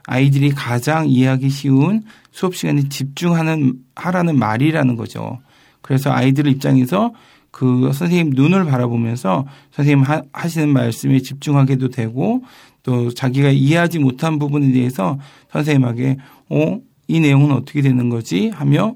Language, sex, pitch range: Korean, male, 130-150 Hz